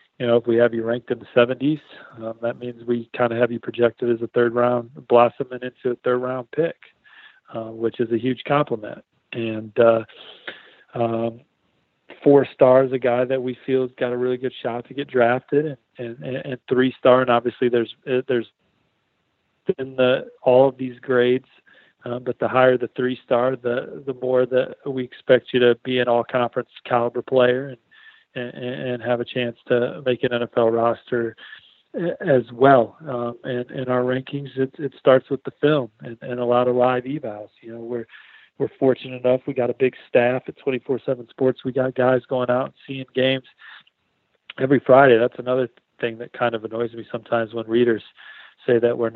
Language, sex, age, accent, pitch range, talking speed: English, male, 40-59, American, 120-130 Hz, 190 wpm